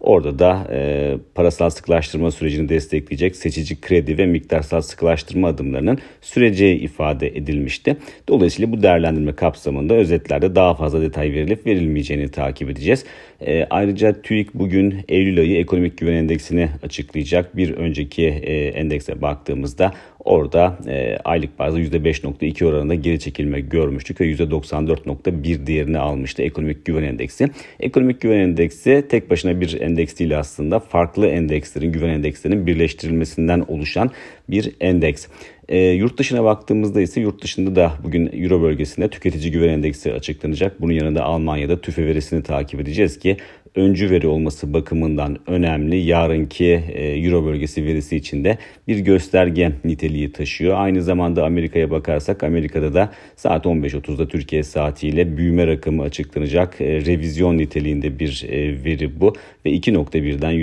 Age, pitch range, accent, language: 40-59, 75-90 Hz, native, Turkish